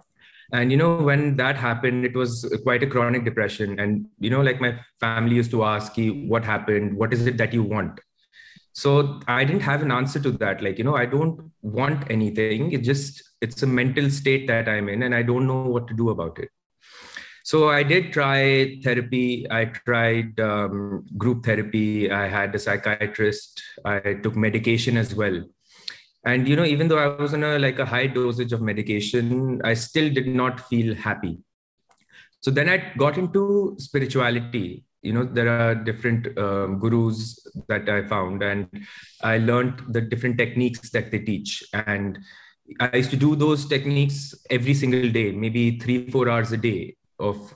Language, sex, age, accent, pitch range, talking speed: English, male, 20-39, Indian, 110-135 Hz, 185 wpm